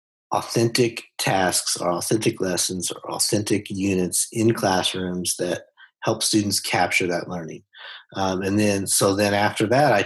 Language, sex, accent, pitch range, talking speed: English, male, American, 95-110 Hz, 145 wpm